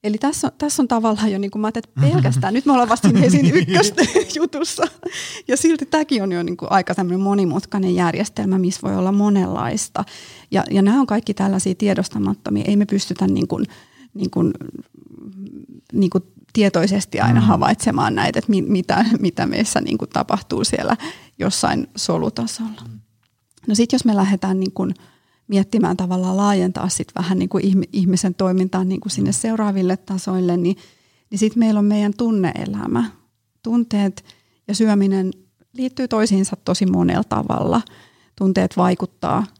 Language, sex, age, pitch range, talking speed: Finnish, female, 30-49, 185-220 Hz, 145 wpm